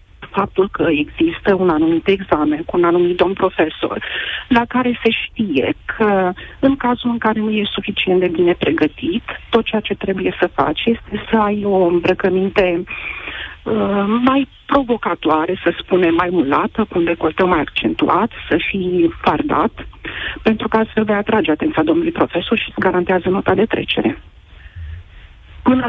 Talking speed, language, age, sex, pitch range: 155 wpm, Romanian, 50-69, female, 180-230 Hz